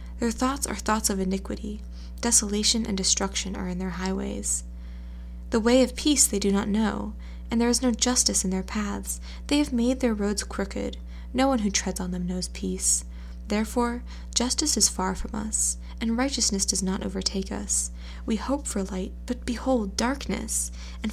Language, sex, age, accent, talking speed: English, female, 10-29, American, 180 wpm